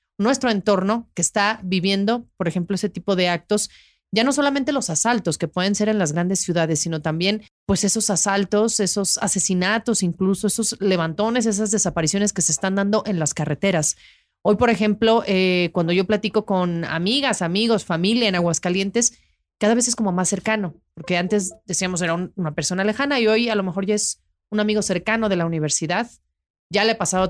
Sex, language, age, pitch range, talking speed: female, Spanish, 30-49, 175-210 Hz, 190 wpm